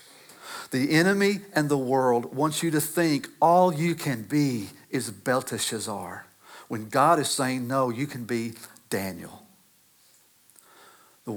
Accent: American